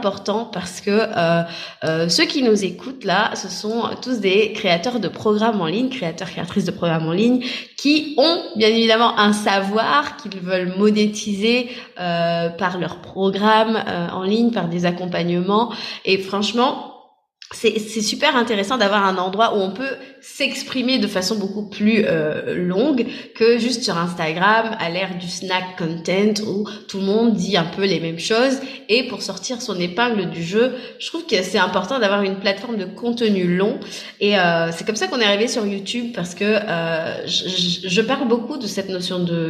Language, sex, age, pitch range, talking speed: French, female, 20-39, 180-230 Hz, 180 wpm